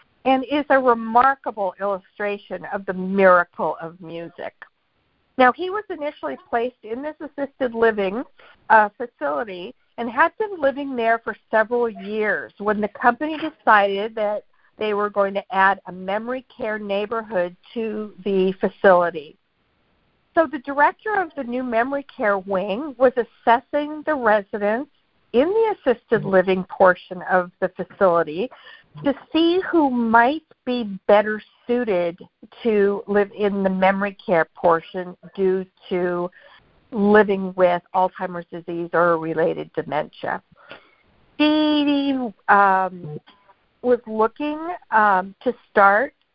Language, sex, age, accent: English, female, 50-69, American